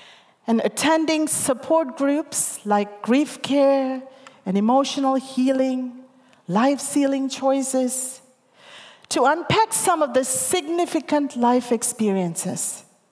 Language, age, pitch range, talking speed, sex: English, 40-59, 230-300 Hz, 90 wpm, female